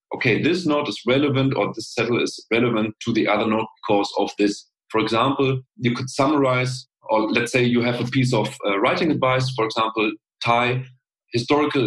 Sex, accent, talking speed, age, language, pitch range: male, German, 185 wpm, 40-59, English, 105-135 Hz